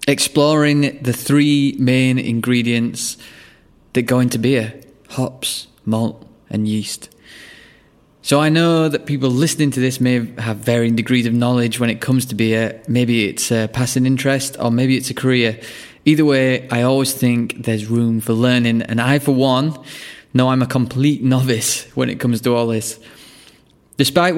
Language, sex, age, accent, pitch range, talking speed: English, male, 20-39, British, 115-135 Hz, 165 wpm